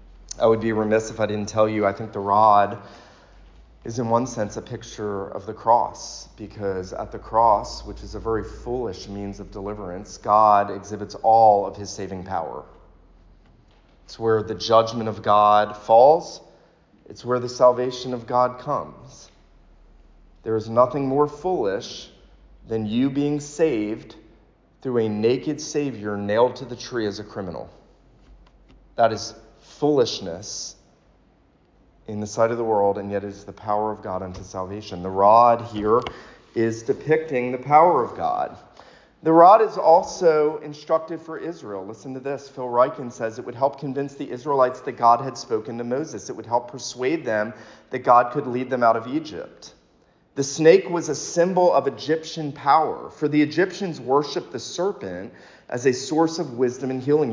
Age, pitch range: 30-49, 105-135 Hz